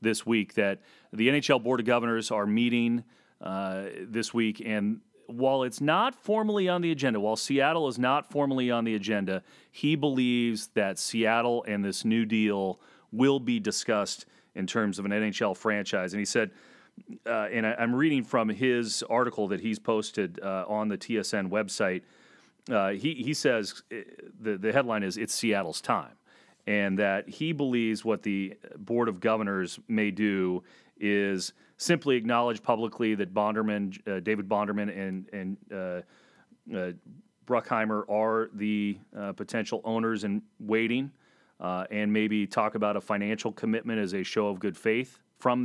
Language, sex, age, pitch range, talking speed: English, male, 40-59, 105-120 Hz, 160 wpm